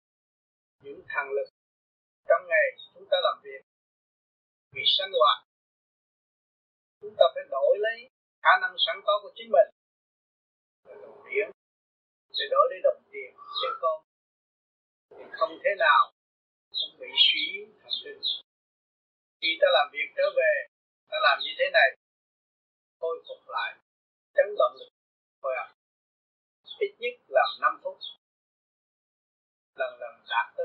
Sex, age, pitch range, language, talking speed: male, 30-49, 280-450 Hz, Vietnamese, 135 wpm